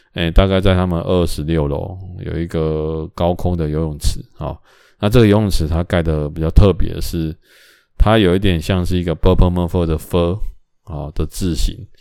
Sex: male